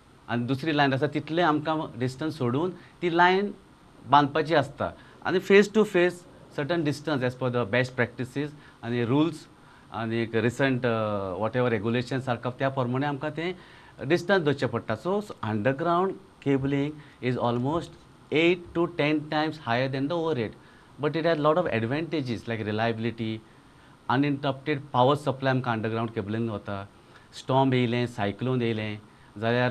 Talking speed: 145 wpm